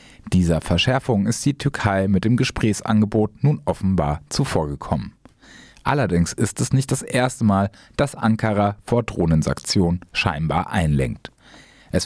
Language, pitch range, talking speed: German, 90-115 Hz, 125 wpm